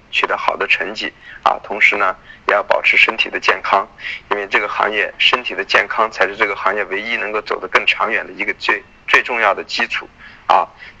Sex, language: male, Chinese